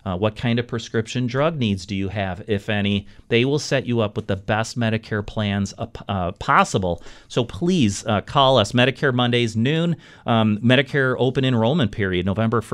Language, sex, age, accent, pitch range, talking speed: English, male, 40-59, American, 105-130 Hz, 185 wpm